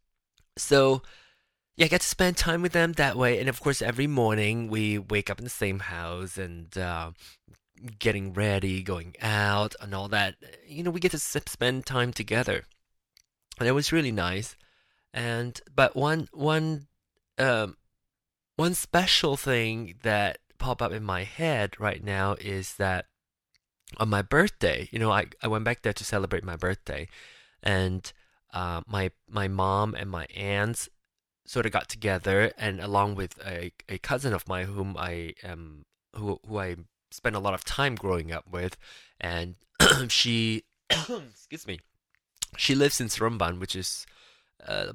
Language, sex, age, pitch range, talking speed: English, male, 20-39, 95-120 Hz, 165 wpm